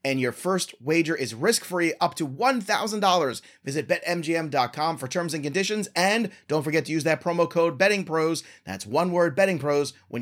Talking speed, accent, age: 170 wpm, American, 30-49